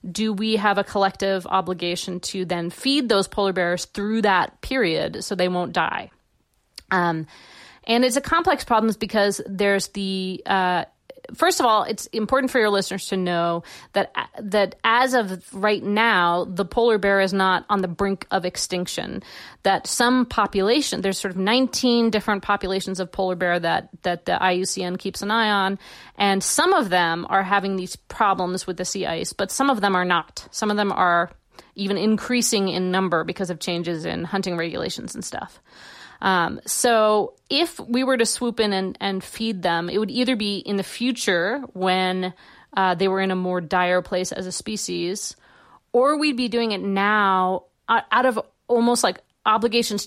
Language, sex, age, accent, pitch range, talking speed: English, female, 40-59, American, 185-220 Hz, 180 wpm